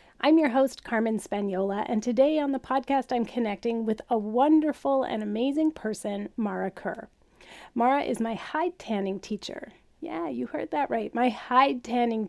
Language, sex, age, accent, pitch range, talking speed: English, female, 30-49, American, 205-260 Hz, 165 wpm